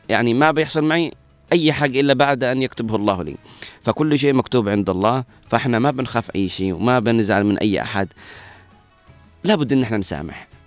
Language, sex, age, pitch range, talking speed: Arabic, male, 30-49, 100-135 Hz, 180 wpm